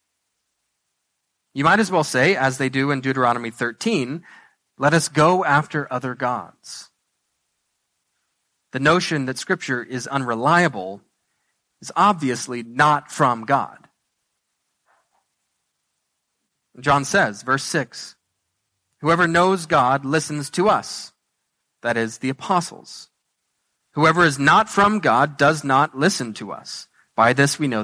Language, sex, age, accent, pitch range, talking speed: English, male, 30-49, American, 130-175 Hz, 120 wpm